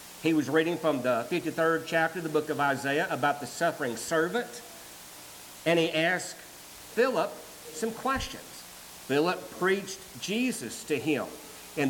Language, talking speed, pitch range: English, 140 wpm, 140-200 Hz